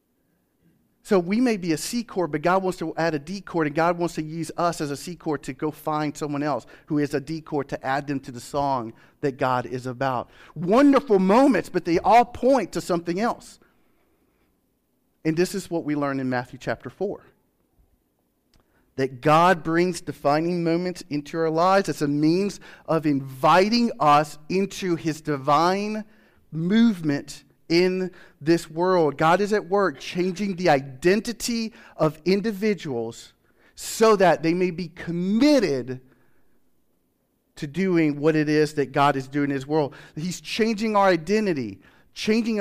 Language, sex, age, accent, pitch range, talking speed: English, male, 40-59, American, 145-190 Hz, 165 wpm